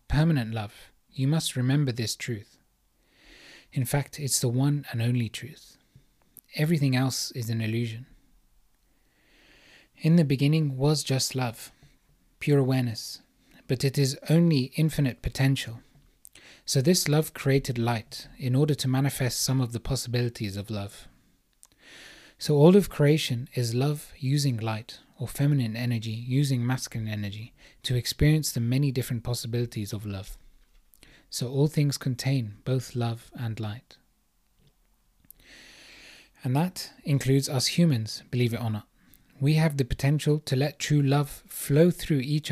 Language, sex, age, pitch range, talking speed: English, male, 30-49, 115-145 Hz, 140 wpm